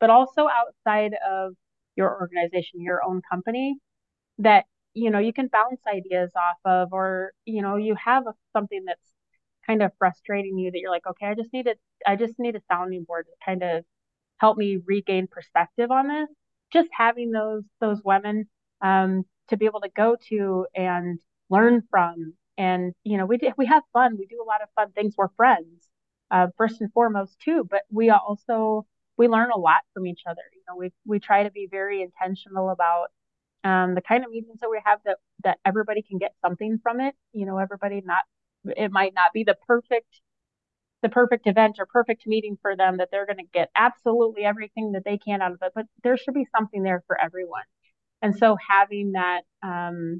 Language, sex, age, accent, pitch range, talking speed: English, female, 30-49, American, 185-225 Hz, 205 wpm